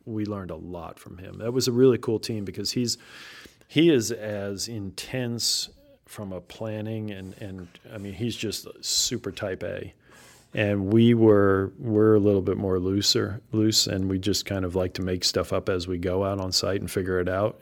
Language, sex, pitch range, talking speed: English, male, 95-110 Hz, 205 wpm